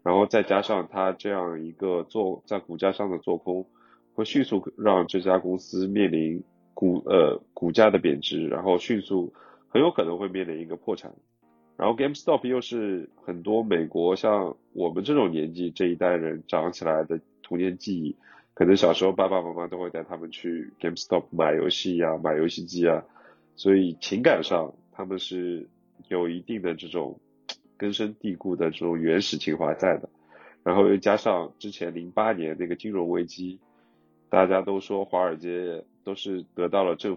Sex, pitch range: male, 85-100 Hz